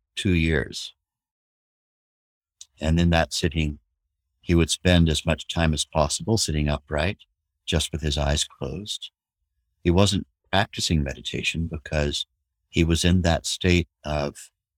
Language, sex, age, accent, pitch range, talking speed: English, male, 60-79, American, 75-85 Hz, 130 wpm